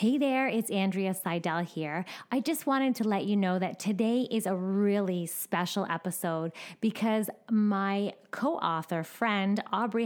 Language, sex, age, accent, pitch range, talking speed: English, female, 20-39, American, 175-210 Hz, 150 wpm